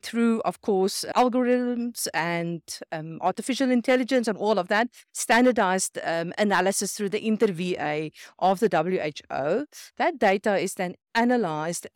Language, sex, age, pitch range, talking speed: English, female, 50-69, 180-235 Hz, 130 wpm